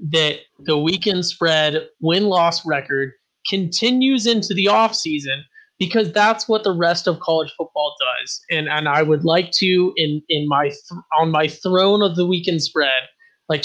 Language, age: English, 30-49